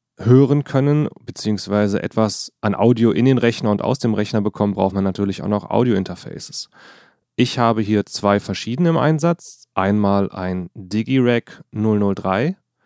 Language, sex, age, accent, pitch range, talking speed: German, male, 30-49, German, 105-130 Hz, 145 wpm